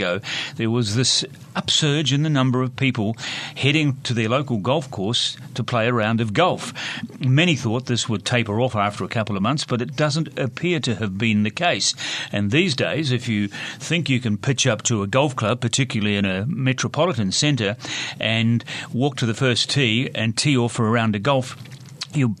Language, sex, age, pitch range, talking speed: English, male, 40-59, 115-140 Hz, 205 wpm